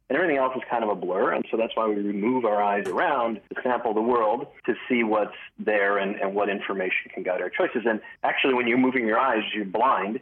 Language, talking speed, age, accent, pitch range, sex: English, 245 wpm, 40-59, American, 105-125 Hz, male